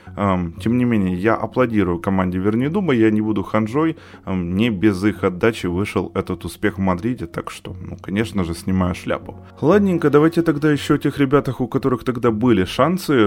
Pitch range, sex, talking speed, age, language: 95-115 Hz, male, 180 wpm, 20-39, Ukrainian